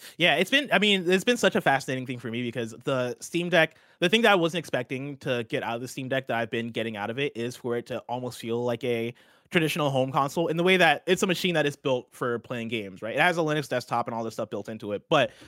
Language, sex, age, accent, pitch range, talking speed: English, male, 20-39, American, 120-165 Hz, 290 wpm